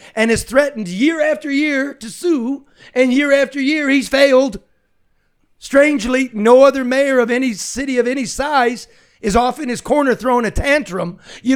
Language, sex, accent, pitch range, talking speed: English, male, American, 190-255 Hz, 170 wpm